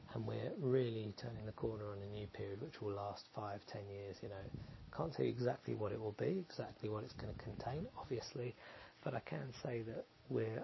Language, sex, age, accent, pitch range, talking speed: English, male, 30-49, British, 105-130 Hz, 215 wpm